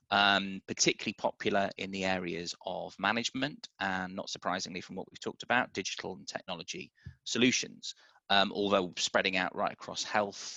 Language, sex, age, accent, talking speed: English, male, 20-39, British, 155 wpm